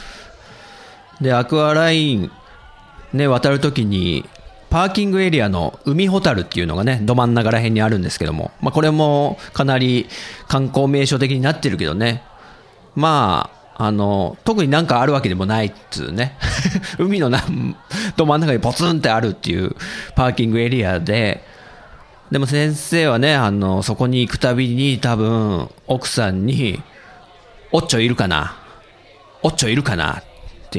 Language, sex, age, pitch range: Japanese, male, 40-59, 105-150 Hz